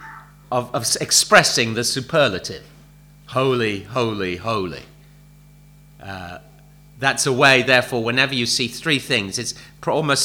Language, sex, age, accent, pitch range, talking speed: English, male, 40-59, British, 130-165 Hz, 110 wpm